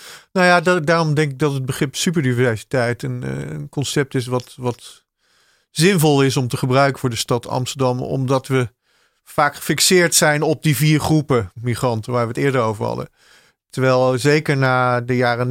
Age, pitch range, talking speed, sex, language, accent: 40-59, 125-150 Hz, 175 wpm, male, Dutch, Dutch